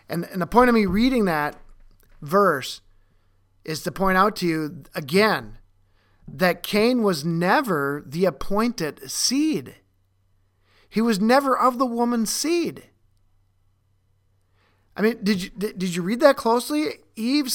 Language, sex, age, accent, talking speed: English, male, 40-59, American, 130 wpm